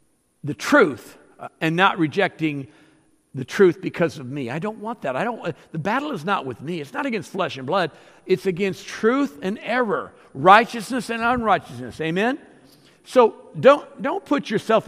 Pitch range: 135-200 Hz